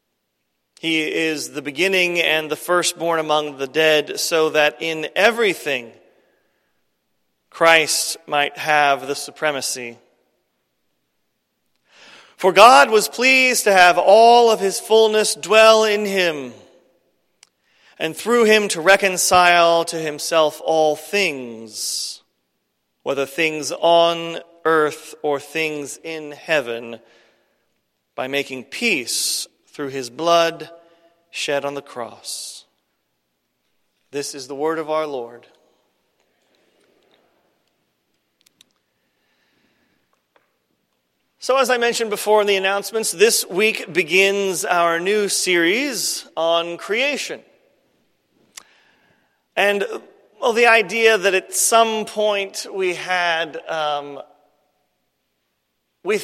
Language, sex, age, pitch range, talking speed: English, male, 40-59, 145-195 Hz, 100 wpm